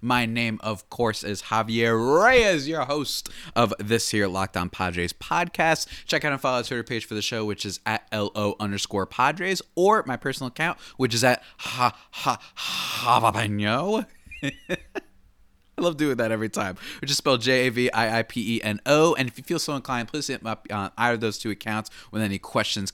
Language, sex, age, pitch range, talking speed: English, male, 20-39, 105-155 Hz, 210 wpm